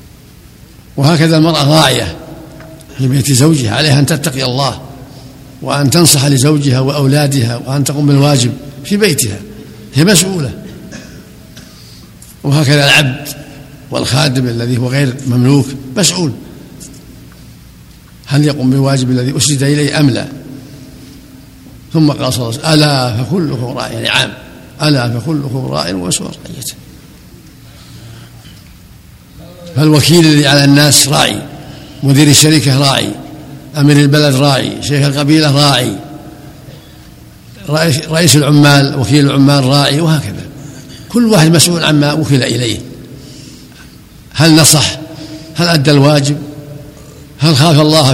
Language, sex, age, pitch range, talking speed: Arabic, male, 60-79, 130-150 Hz, 105 wpm